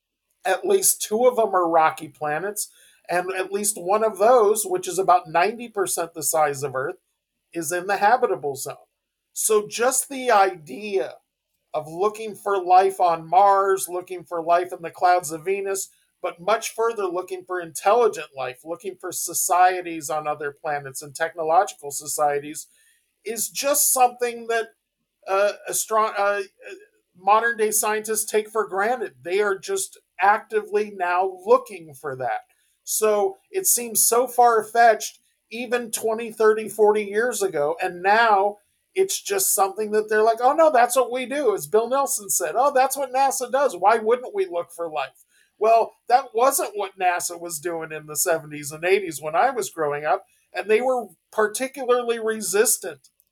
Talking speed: 165 wpm